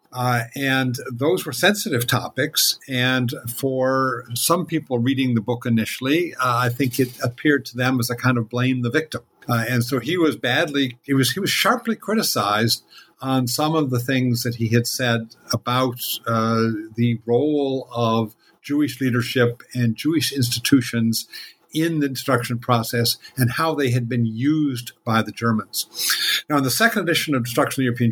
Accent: American